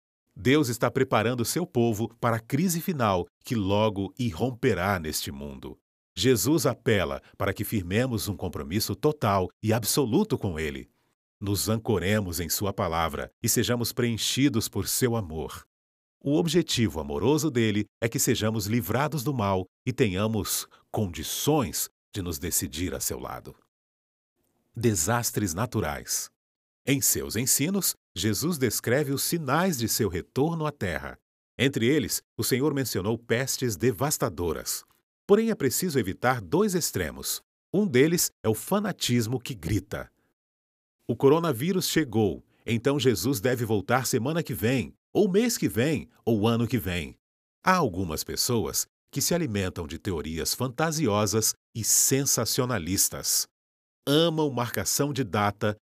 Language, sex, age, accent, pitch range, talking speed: Portuguese, male, 40-59, Brazilian, 100-135 Hz, 130 wpm